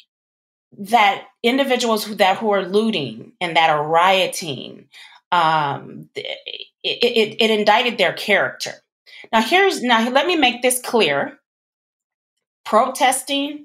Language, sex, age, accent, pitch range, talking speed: English, female, 30-49, American, 170-235 Hz, 120 wpm